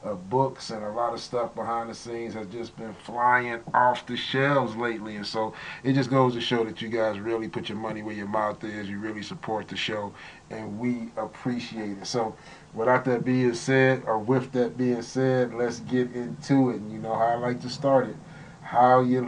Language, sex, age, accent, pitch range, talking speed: English, male, 30-49, American, 110-125 Hz, 220 wpm